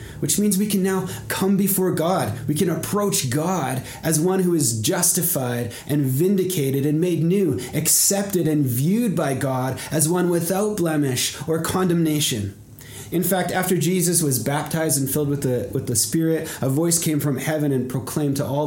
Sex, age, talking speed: male, 30-49, 175 wpm